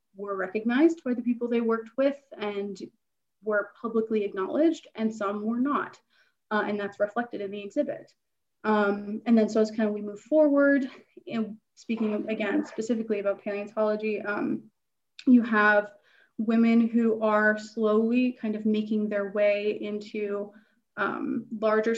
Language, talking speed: English, 145 wpm